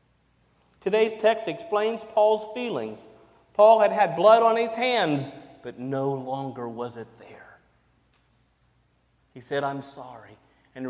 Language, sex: English, male